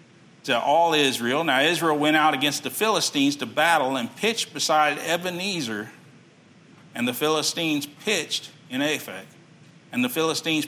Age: 50-69